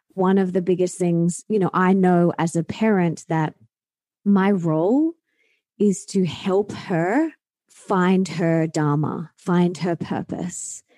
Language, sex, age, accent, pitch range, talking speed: English, female, 20-39, Australian, 170-220 Hz, 135 wpm